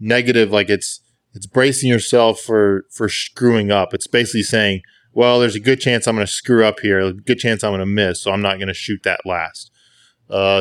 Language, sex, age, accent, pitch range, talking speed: English, male, 20-39, American, 105-125 Hz, 225 wpm